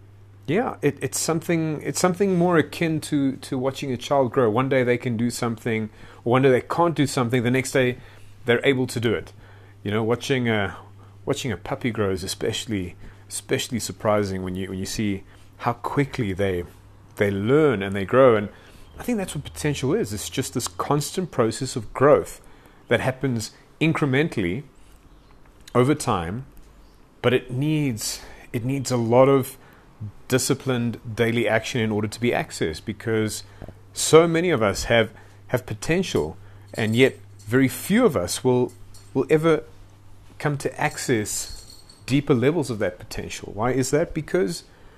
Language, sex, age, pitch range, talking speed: English, male, 30-49, 105-140 Hz, 165 wpm